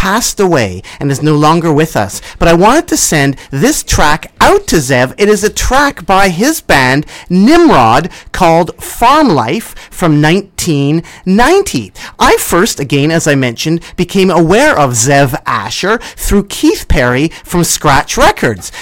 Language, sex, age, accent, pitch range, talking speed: English, male, 40-59, American, 160-260 Hz, 155 wpm